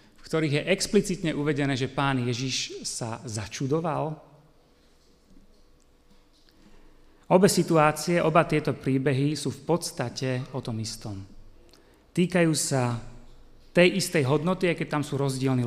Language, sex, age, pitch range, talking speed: Slovak, male, 30-49, 120-160 Hz, 120 wpm